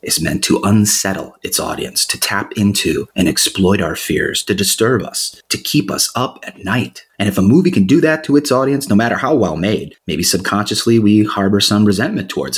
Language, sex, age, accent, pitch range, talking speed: English, male, 30-49, American, 105-130 Hz, 210 wpm